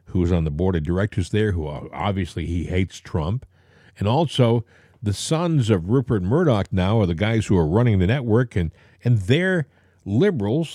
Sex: male